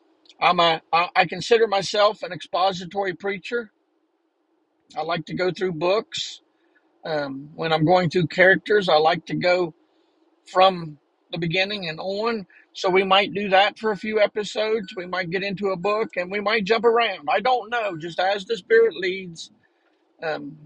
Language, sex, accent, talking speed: English, male, American, 170 wpm